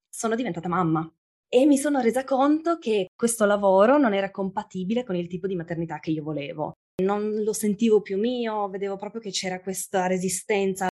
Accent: native